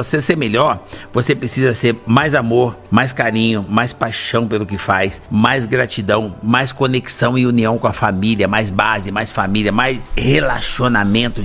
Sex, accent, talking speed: male, Brazilian, 155 wpm